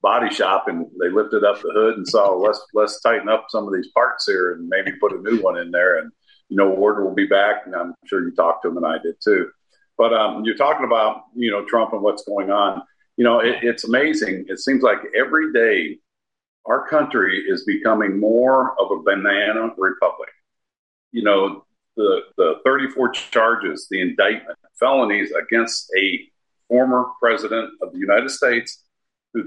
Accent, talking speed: American, 190 wpm